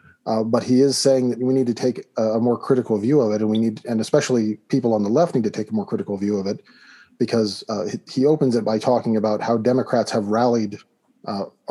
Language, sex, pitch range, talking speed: English, male, 110-130 Hz, 245 wpm